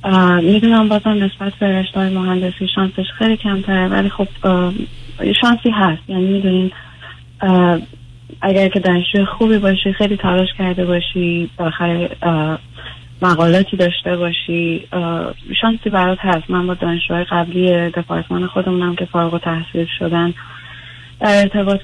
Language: Persian